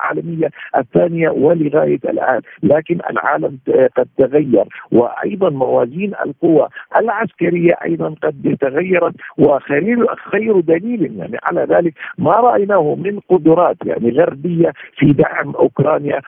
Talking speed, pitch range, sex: 110 wpm, 145-200 Hz, male